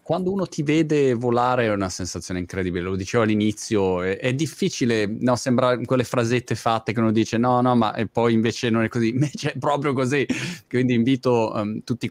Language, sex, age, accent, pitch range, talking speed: Italian, male, 20-39, native, 100-145 Hz, 205 wpm